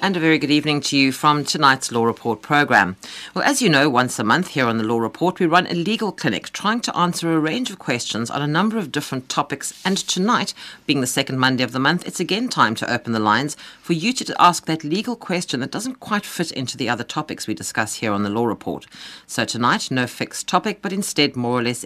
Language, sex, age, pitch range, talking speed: English, female, 50-69, 120-185 Hz, 245 wpm